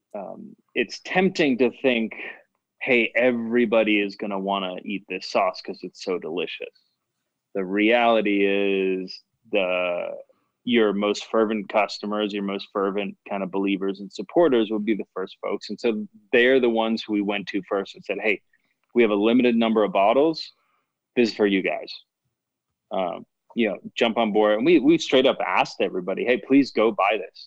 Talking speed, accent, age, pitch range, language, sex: 180 wpm, American, 20-39, 100-115 Hz, English, male